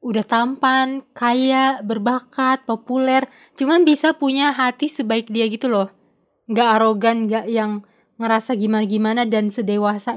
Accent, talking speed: native, 125 wpm